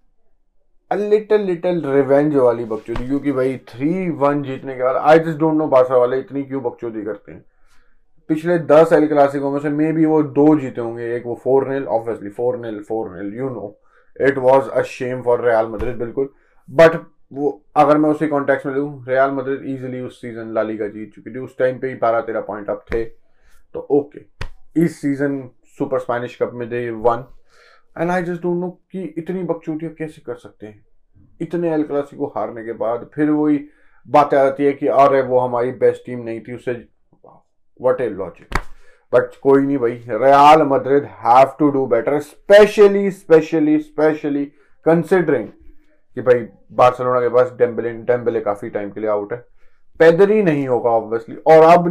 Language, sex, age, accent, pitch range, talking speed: Hindi, male, 20-39, native, 120-155 Hz, 145 wpm